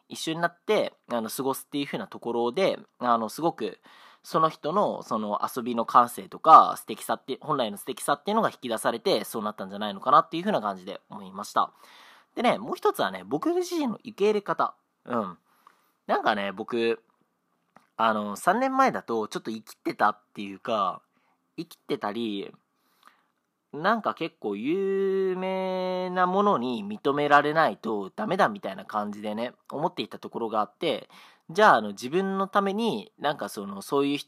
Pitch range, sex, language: 115-190 Hz, male, Japanese